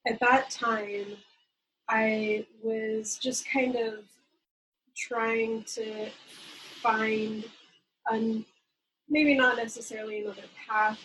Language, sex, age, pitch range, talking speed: English, female, 20-39, 210-250 Hz, 90 wpm